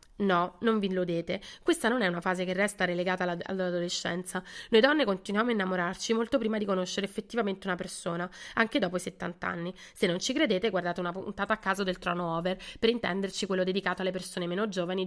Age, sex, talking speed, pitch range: 30-49, female, 205 wpm, 180-225 Hz